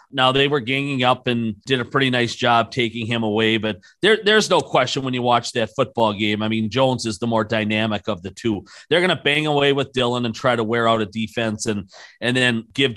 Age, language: 40-59, English